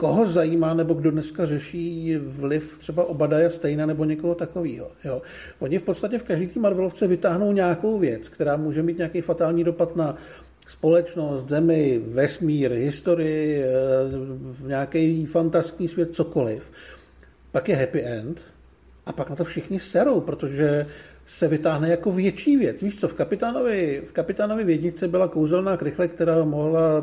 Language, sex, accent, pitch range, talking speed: Czech, male, native, 145-175 Hz, 145 wpm